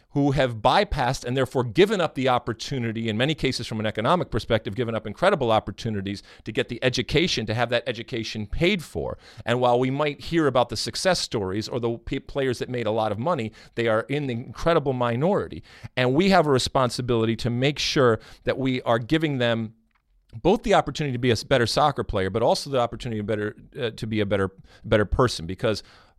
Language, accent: English, American